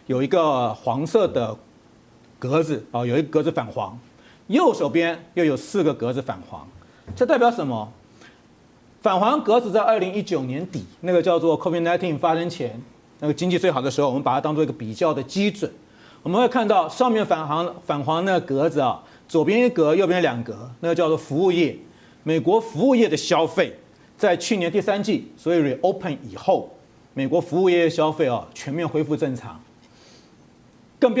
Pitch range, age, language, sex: 145-185 Hz, 40-59, Chinese, male